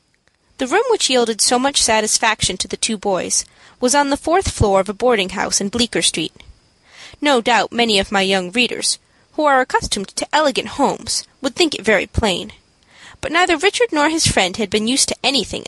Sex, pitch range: female, 210-280 Hz